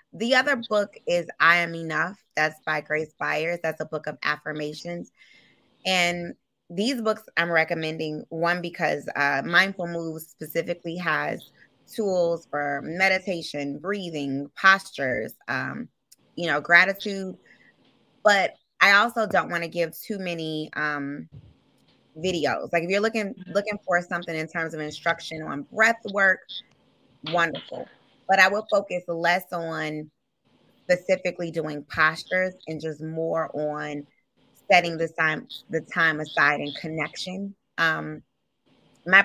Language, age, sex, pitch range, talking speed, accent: English, 20-39, female, 155-190 Hz, 130 wpm, American